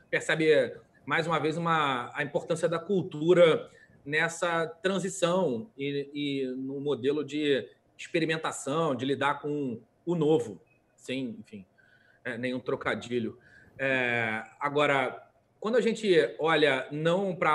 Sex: male